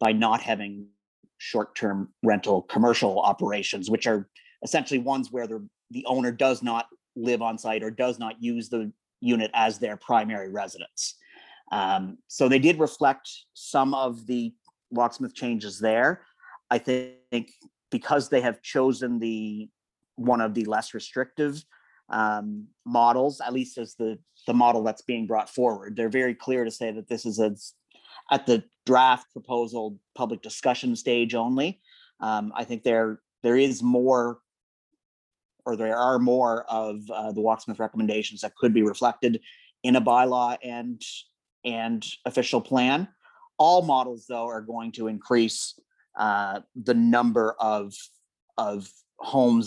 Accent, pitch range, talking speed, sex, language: American, 110-125 Hz, 145 wpm, male, English